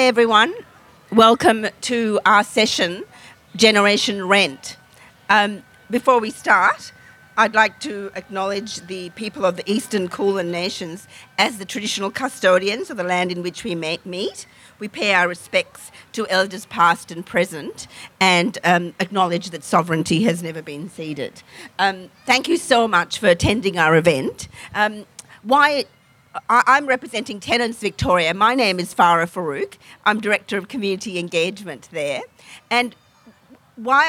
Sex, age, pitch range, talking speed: female, 50-69, 180-230 Hz, 140 wpm